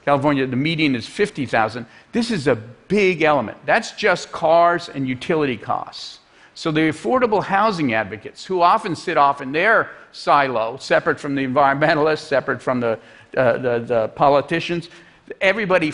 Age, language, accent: 50-69, Chinese, American